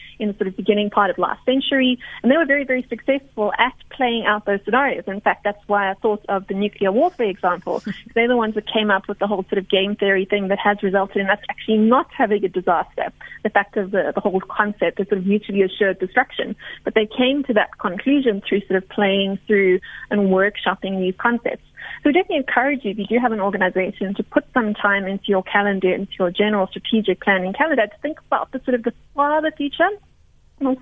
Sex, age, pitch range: female, 30-49, 195-245 Hz